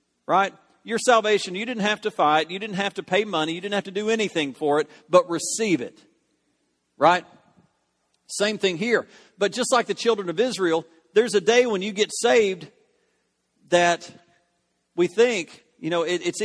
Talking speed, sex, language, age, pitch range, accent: 180 wpm, male, English, 50-69, 160-235 Hz, American